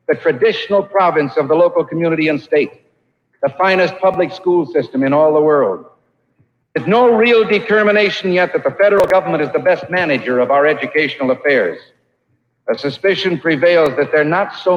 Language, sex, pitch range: English, male, 135-180 Hz